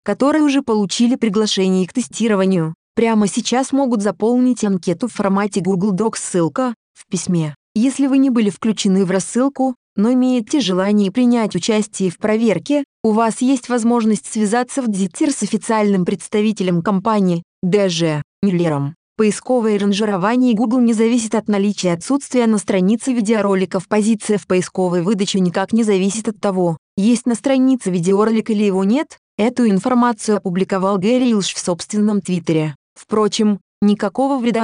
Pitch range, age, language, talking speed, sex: 190-235 Hz, 20-39, Russian, 145 wpm, female